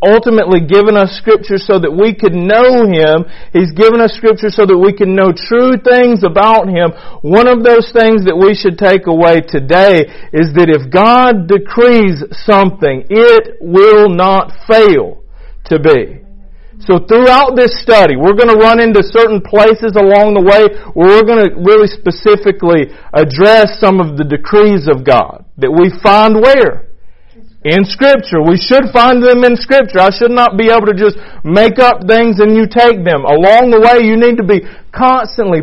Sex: male